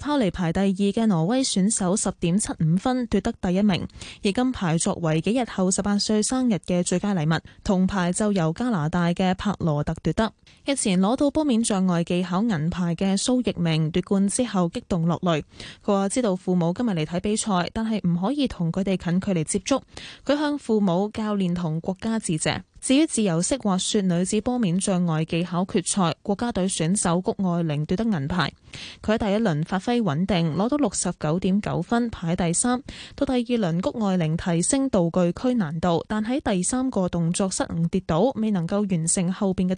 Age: 10-29